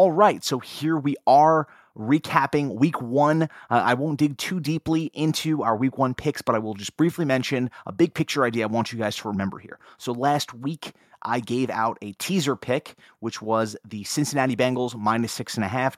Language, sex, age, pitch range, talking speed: English, male, 30-49, 110-145 Hz, 210 wpm